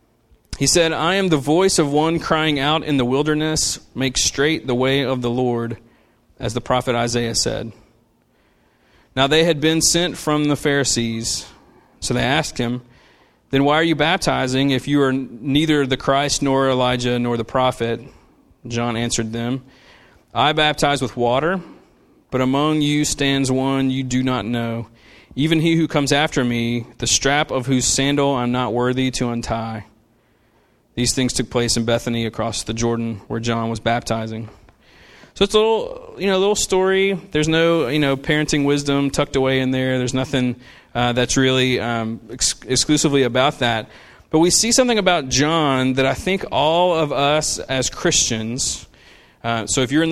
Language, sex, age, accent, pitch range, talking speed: English, male, 30-49, American, 120-150 Hz, 175 wpm